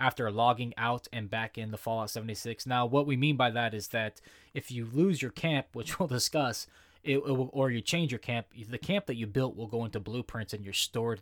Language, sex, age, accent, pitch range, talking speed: English, male, 20-39, American, 105-130 Hz, 240 wpm